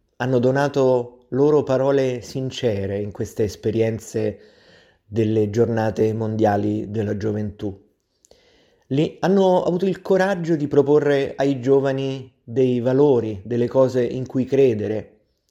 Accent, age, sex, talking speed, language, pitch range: native, 30-49, male, 110 wpm, Italian, 110-140 Hz